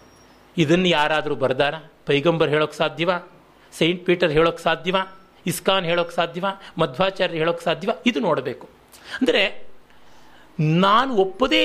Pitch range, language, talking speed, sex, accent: 155-220 Hz, Kannada, 110 wpm, male, native